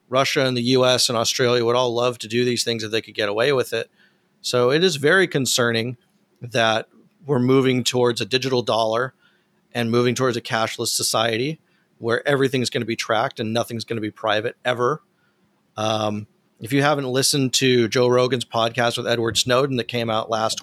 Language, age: English, 40-59